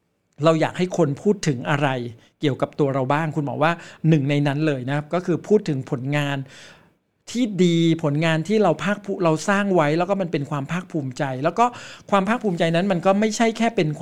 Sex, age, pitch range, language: male, 60-79, 145-185 Hz, Thai